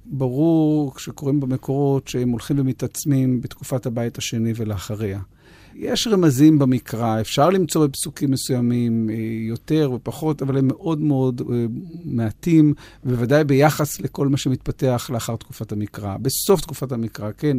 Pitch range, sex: 125-150 Hz, male